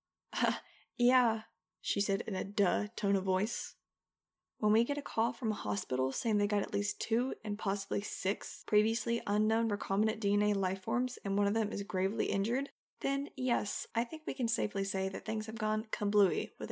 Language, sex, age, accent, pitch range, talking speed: English, female, 20-39, American, 185-215 Hz, 190 wpm